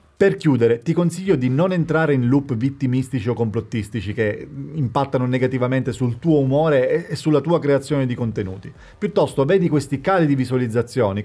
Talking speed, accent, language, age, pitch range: 160 wpm, native, Italian, 30-49, 115-150 Hz